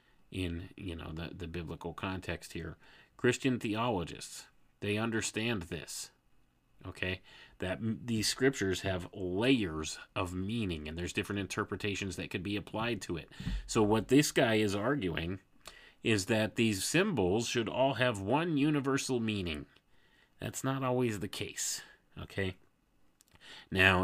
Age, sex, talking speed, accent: 30-49, male, 135 wpm, American